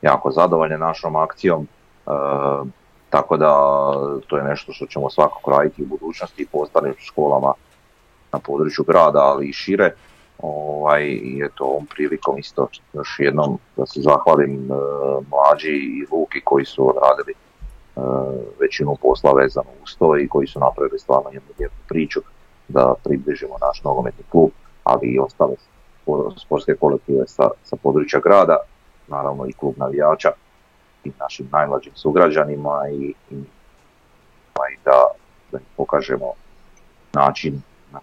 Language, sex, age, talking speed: Croatian, male, 40-59, 135 wpm